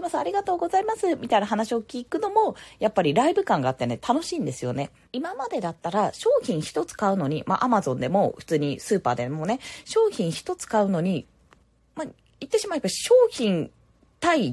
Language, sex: Japanese, female